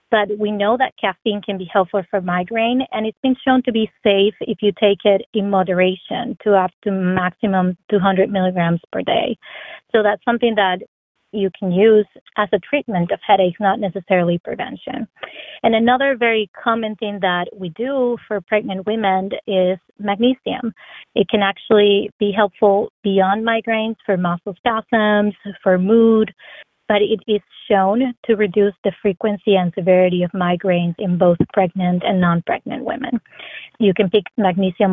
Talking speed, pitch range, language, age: 160 wpm, 185-220 Hz, English, 30-49